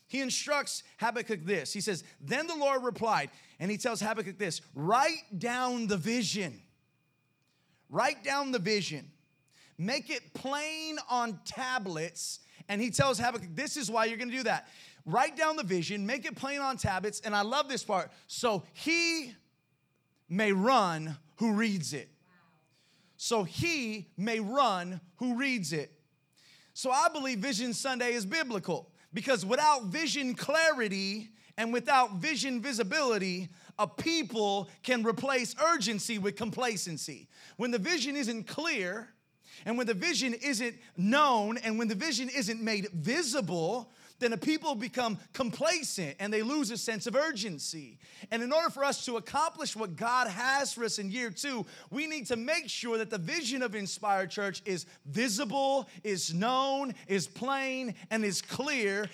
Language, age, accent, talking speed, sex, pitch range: English, 30-49, American, 155 wpm, male, 185-255 Hz